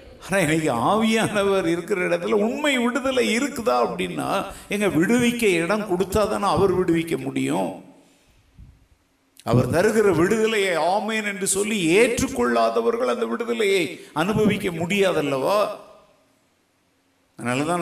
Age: 50-69